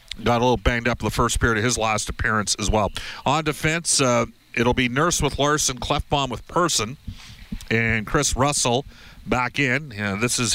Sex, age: male, 50-69